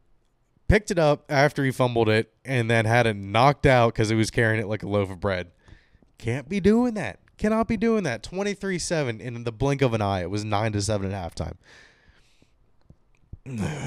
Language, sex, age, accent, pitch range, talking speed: English, male, 20-39, American, 110-175 Hz, 185 wpm